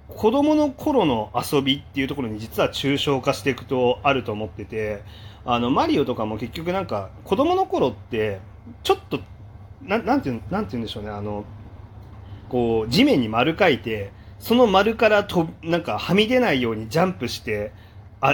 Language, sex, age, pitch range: Japanese, male, 30-49, 105-160 Hz